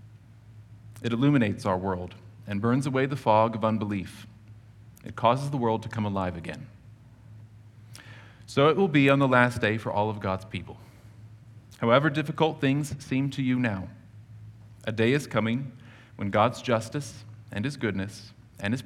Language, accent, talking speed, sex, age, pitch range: English, American, 160 wpm, male, 40-59, 105-125 Hz